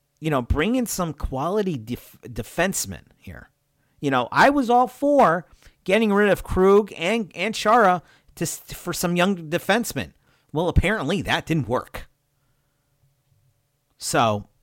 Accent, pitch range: American, 125-165 Hz